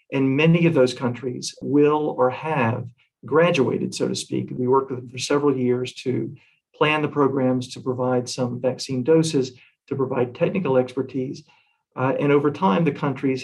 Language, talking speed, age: English, 170 wpm, 50-69